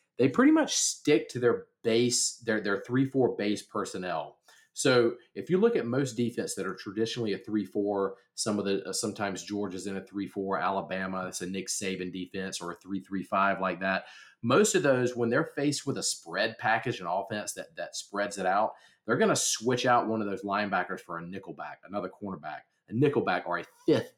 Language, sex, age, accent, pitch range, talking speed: English, male, 40-59, American, 95-120 Hz, 195 wpm